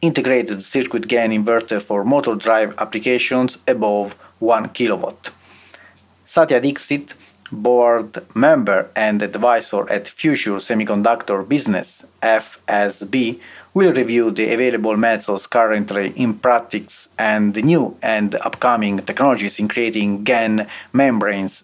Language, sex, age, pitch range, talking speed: English, male, 30-49, 105-125 Hz, 110 wpm